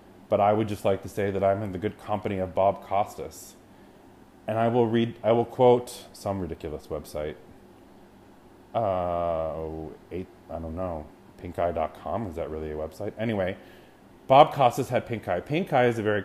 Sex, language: male, English